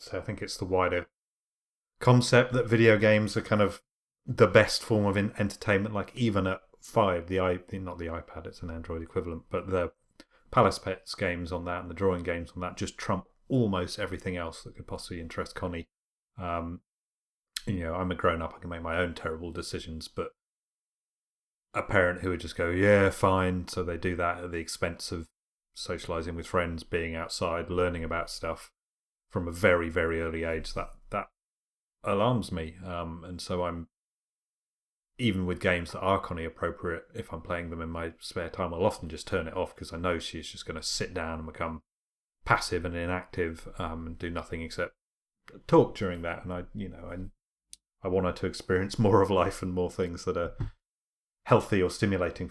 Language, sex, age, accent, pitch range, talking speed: English, male, 30-49, British, 85-95 Hz, 195 wpm